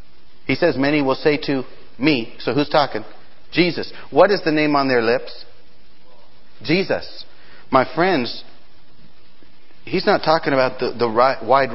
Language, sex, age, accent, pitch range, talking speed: English, male, 50-69, American, 115-165 Hz, 145 wpm